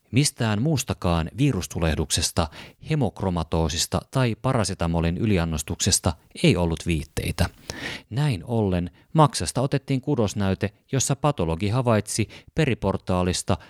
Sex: male